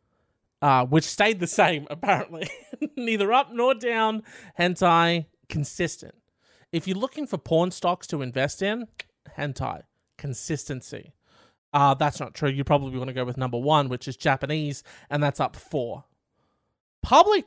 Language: English